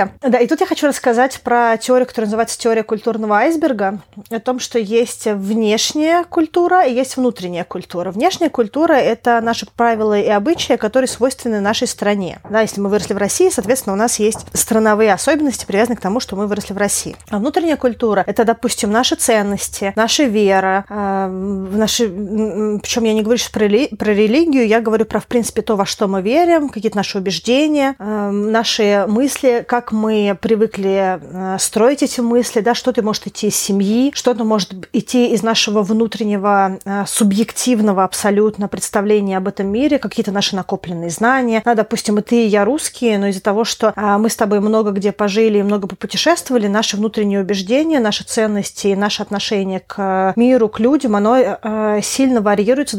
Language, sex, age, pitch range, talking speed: Russian, female, 30-49, 205-240 Hz, 170 wpm